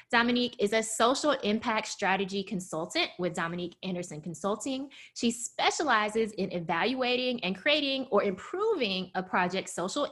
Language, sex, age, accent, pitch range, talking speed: English, female, 20-39, American, 180-245 Hz, 130 wpm